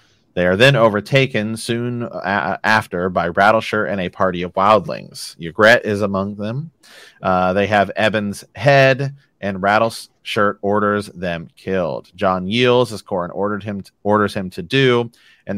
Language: English